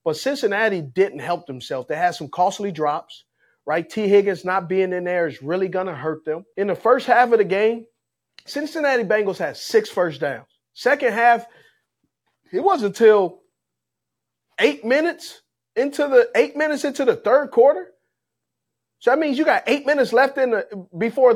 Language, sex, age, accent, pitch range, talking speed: English, male, 30-49, American, 185-295 Hz, 175 wpm